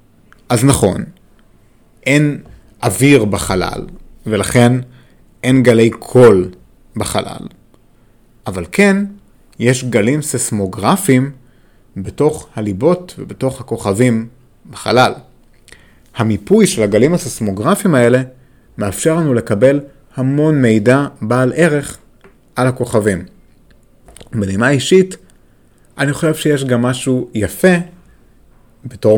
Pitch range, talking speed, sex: 110-135 Hz, 90 wpm, male